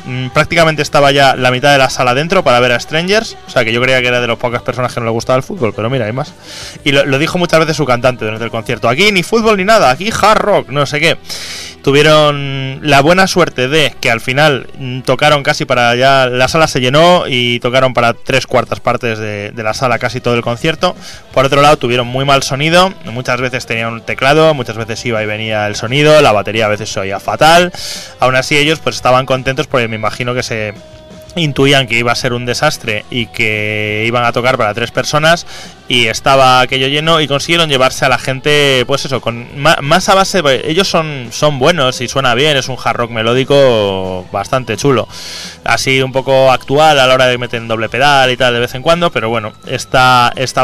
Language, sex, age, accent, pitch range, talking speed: Spanish, male, 20-39, Spanish, 120-150 Hz, 225 wpm